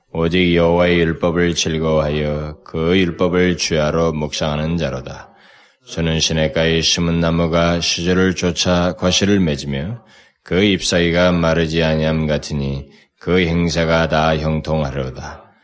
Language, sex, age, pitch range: Korean, male, 20-39, 75-90 Hz